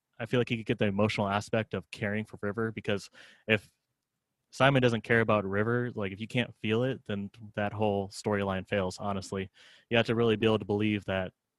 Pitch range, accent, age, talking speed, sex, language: 105-120 Hz, American, 20-39, 210 wpm, male, English